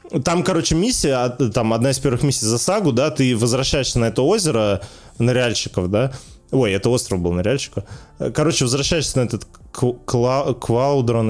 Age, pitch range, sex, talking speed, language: 20-39, 115-155 Hz, male, 155 wpm, Russian